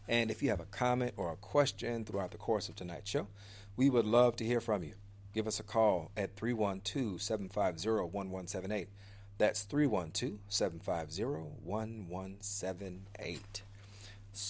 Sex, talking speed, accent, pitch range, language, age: male, 125 wpm, American, 100-110 Hz, English, 40-59